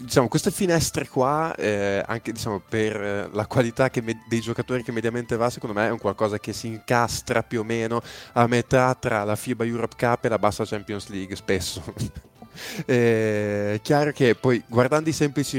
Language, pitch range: Italian, 105-125 Hz